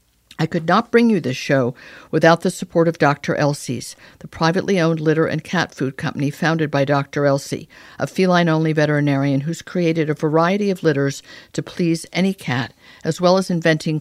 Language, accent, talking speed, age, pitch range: English, American, 180 wpm, 50-69, 145-175 Hz